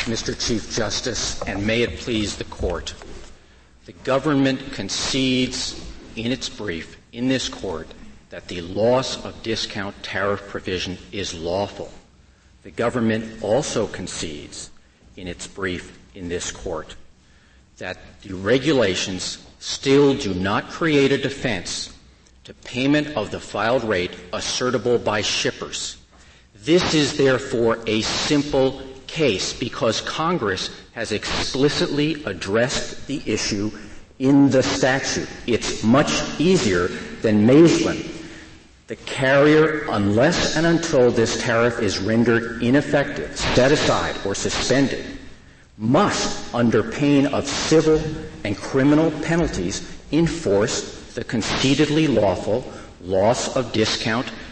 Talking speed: 115 wpm